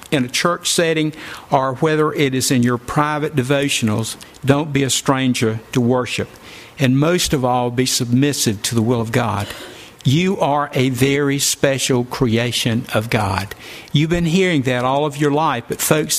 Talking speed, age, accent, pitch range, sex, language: 175 wpm, 50-69, American, 125-155 Hz, male, English